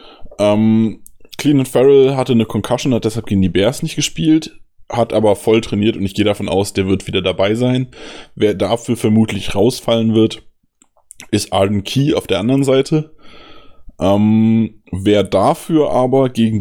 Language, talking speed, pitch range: German, 165 wpm, 95-115 Hz